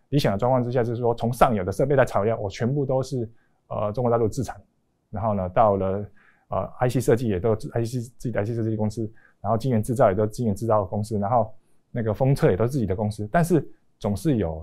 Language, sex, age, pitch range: Chinese, male, 20-39, 105-130 Hz